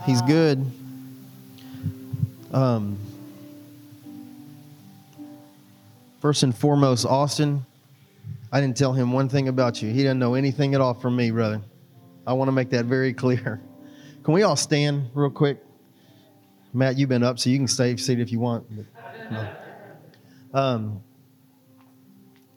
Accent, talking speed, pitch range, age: American, 140 wpm, 120-140 Hz, 30-49